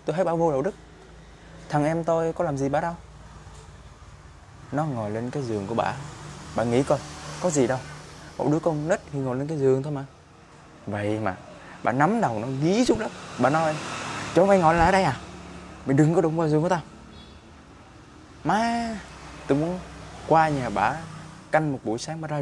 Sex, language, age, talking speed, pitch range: male, Vietnamese, 20-39, 200 wpm, 115-155 Hz